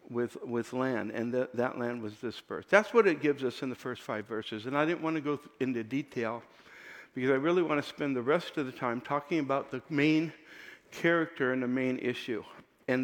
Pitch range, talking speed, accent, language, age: 140-180 Hz, 220 wpm, American, English, 60-79